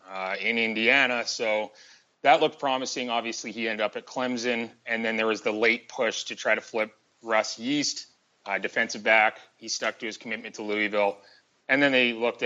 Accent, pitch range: American, 105-120 Hz